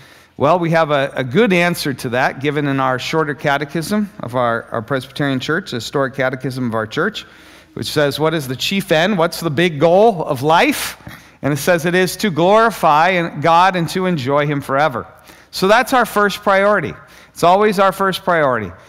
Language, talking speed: English, 195 wpm